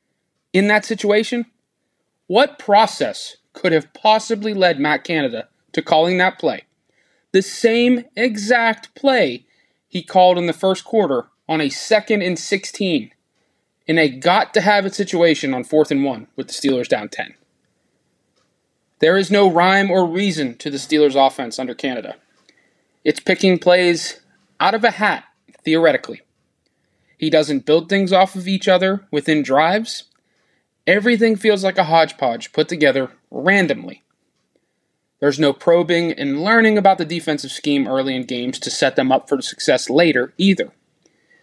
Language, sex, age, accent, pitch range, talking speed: English, male, 20-39, American, 150-210 Hz, 145 wpm